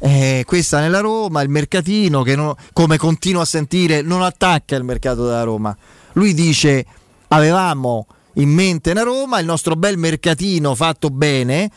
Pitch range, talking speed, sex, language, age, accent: 135-170 Hz, 160 wpm, male, Italian, 30-49, native